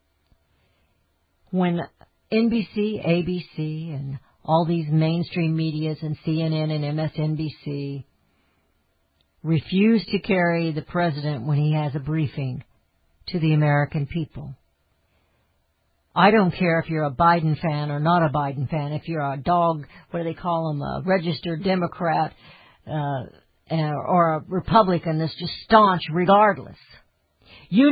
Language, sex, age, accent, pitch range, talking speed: English, female, 60-79, American, 140-185 Hz, 130 wpm